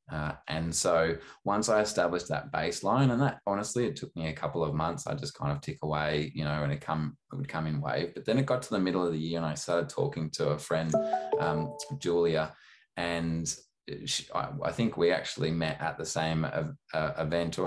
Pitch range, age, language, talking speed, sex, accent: 80-85 Hz, 20-39, English, 225 wpm, male, Australian